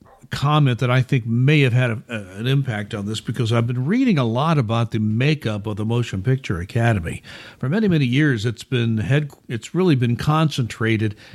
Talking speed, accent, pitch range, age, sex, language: 200 wpm, American, 115-140 Hz, 60-79, male, English